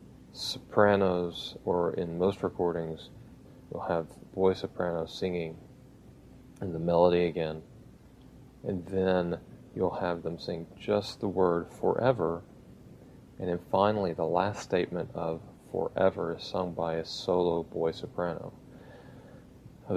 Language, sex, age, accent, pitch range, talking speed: English, male, 40-59, American, 85-100 Hz, 120 wpm